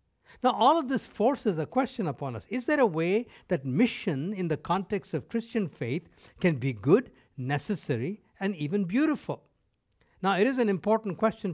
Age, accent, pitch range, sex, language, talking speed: 60-79, Indian, 125-195 Hz, male, English, 175 wpm